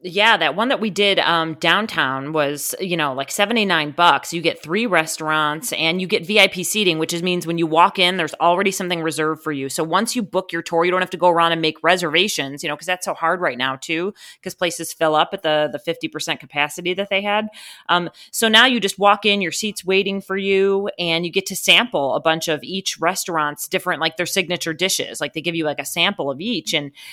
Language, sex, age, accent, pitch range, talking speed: English, female, 30-49, American, 160-200 Hz, 240 wpm